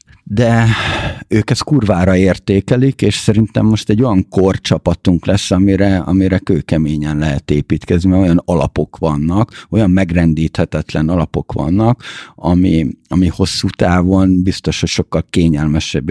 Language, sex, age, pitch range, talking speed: Hungarian, male, 50-69, 80-100 Hz, 125 wpm